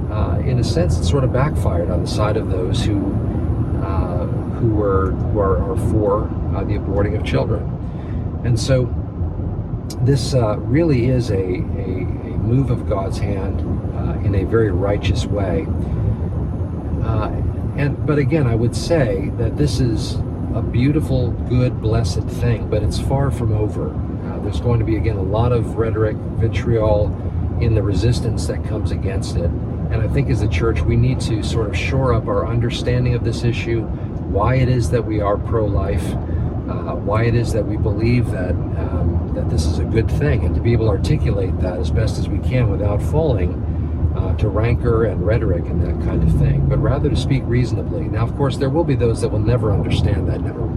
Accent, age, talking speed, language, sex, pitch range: American, 50-69, 195 wpm, English, male, 90-115 Hz